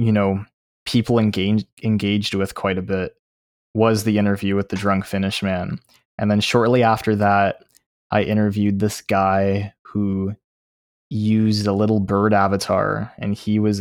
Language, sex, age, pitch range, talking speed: English, male, 20-39, 95-110 Hz, 150 wpm